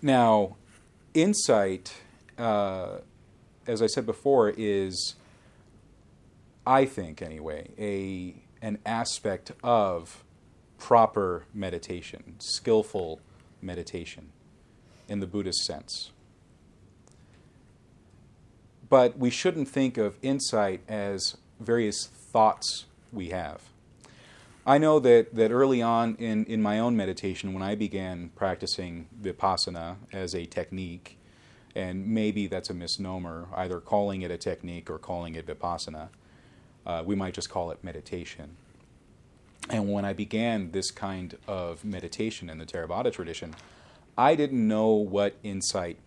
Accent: American